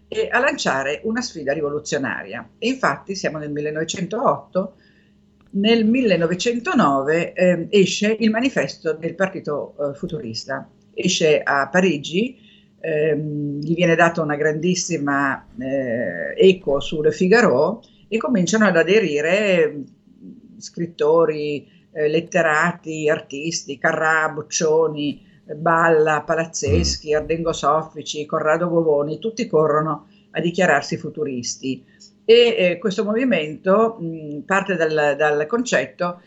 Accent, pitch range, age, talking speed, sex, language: native, 155-210 Hz, 50-69, 100 wpm, female, Italian